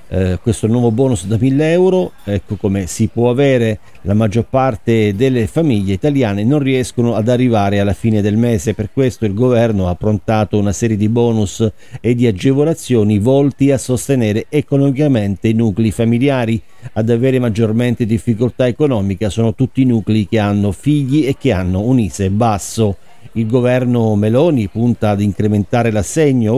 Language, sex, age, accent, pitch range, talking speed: Italian, male, 50-69, native, 105-125 Hz, 160 wpm